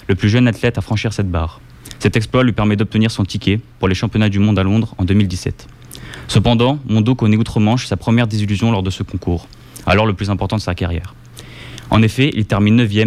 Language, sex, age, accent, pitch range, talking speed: French, male, 20-39, French, 95-115 Hz, 210 wpm